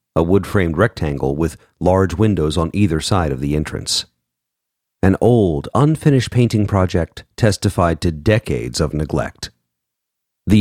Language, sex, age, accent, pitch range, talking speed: English, male, 50-69, American, 75-105 Hz, 130 wpm